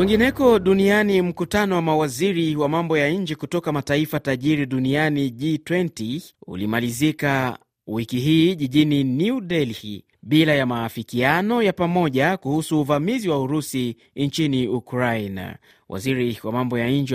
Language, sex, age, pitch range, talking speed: Swahili, male, 30-49, 125-170 Hz, 125 wpm